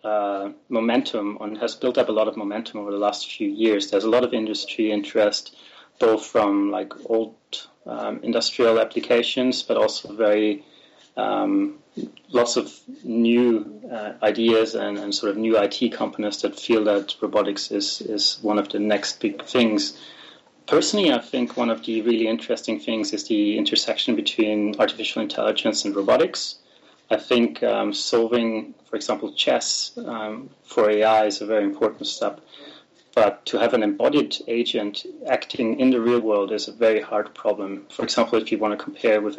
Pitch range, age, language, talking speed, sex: 105-115 Hz, 30-49, English, 170 wpm, male